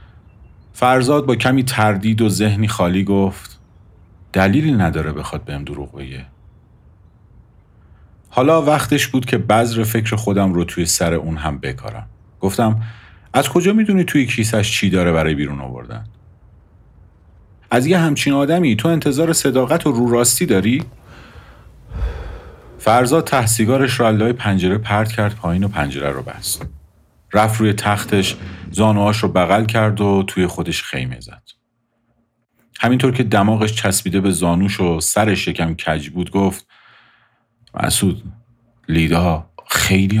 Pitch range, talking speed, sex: 85-115 Hz, 130 wpm, male